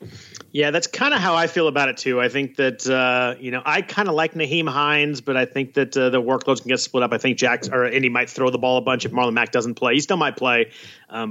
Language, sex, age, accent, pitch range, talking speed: English, male, 30-49, American, 125-155 Hz, 285 wpm